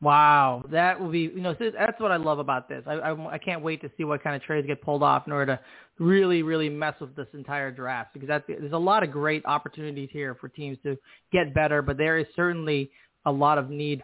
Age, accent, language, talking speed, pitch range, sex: 30-49, American, English, 250 wpm, 145-165 Hz, male